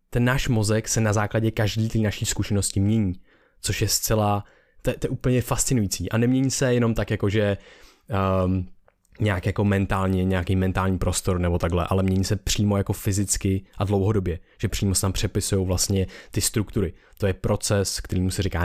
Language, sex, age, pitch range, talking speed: Czech, male, 20-39, 95-105 Hz, 180 wpm